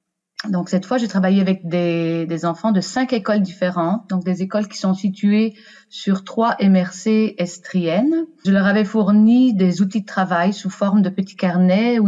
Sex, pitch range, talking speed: female, 175-210 Hz, 185 wpm